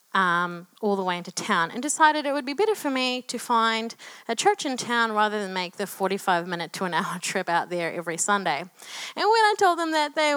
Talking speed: 215 wpm